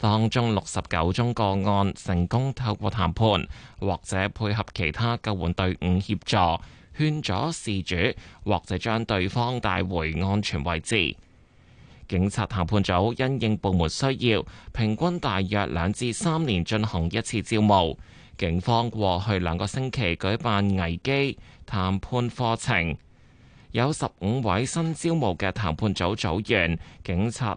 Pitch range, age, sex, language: 90-120 Hz, 20-39, male, Chinese